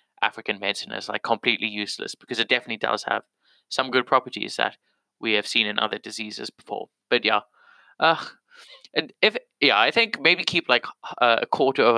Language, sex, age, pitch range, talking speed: English, male, 20-39, 105-130 Hz, 180 wpm